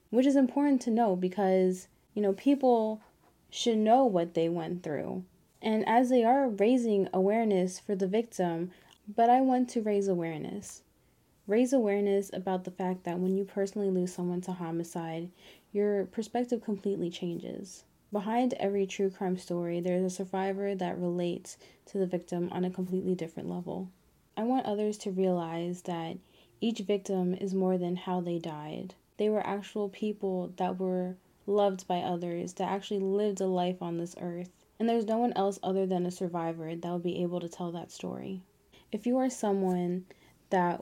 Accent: American